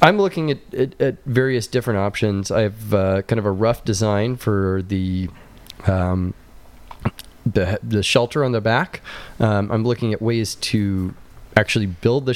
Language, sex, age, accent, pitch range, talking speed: English, male, 20-39, American, 95-115 Hz, 165 wpm